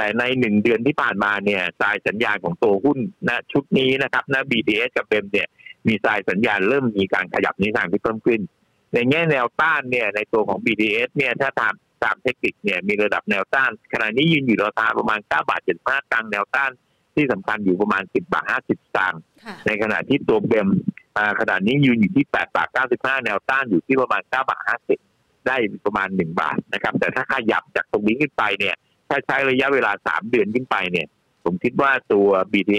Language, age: Thai, 60-79